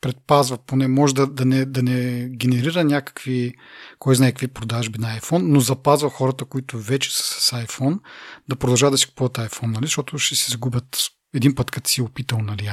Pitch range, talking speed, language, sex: 120-135 Hz, 200 wpm, Bulgarian, male